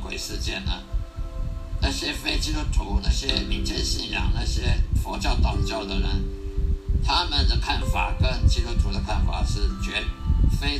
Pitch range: 70-100 Hz